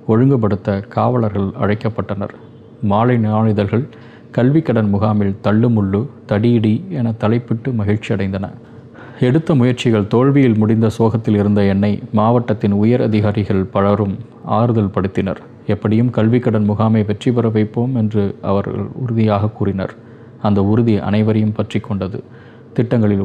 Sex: male